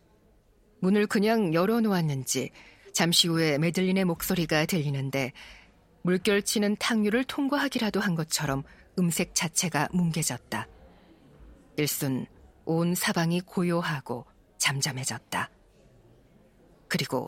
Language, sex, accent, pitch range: Korean, female, native, 155-210 Hz